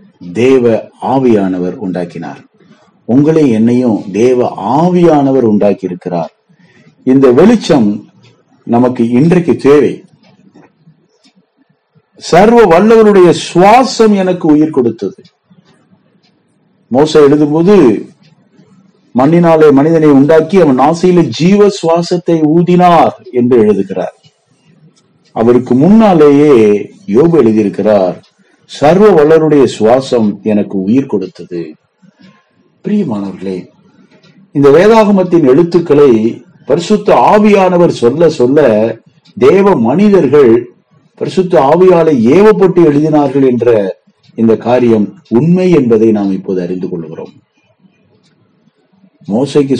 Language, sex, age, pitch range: Tamil, male, 50-69, 115-180 Hz